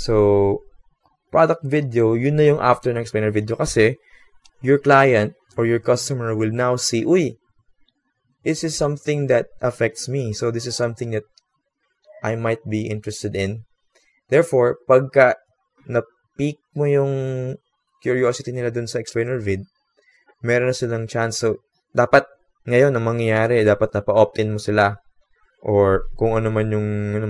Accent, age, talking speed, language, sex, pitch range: Filipino, 20-39, 145 wpm, English, male, 105-135 Hz